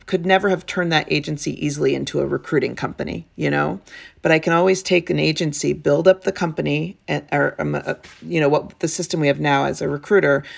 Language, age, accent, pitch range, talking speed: English, 40-59, American, 145-180 Hz, 210 wpm